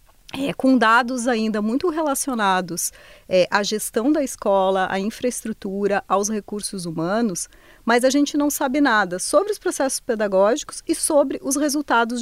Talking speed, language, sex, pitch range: 145 wpm, Portuguese, female, 210-275 Hz